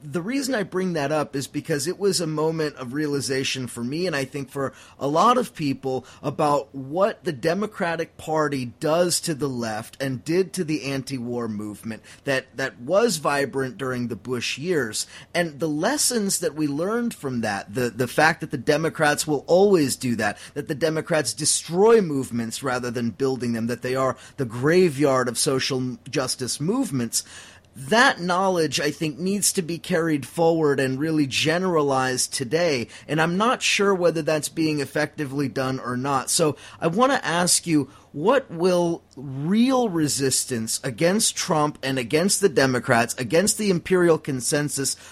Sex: male